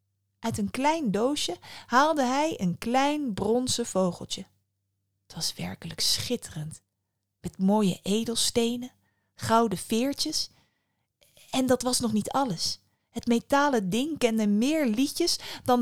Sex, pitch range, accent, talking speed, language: female, 165-235 Hz, Dutch, 120 wpm, Dutch